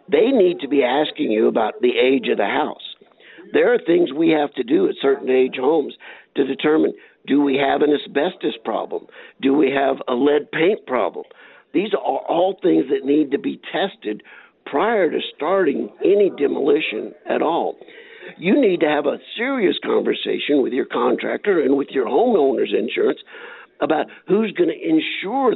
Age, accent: 60-79, American